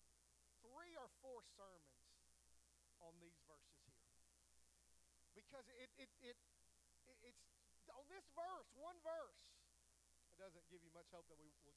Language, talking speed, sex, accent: English, 135 wpm, male, American